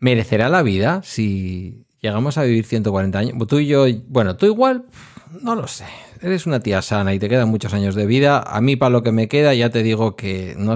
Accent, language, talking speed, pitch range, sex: Spanish, Spanish, 230 wpm, 95-120 Hz, male